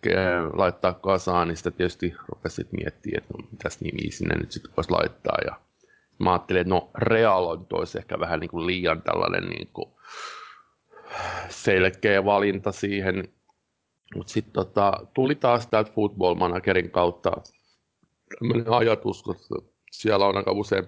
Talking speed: 140 wpm